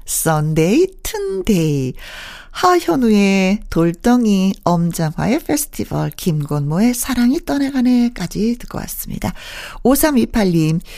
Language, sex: Korean, female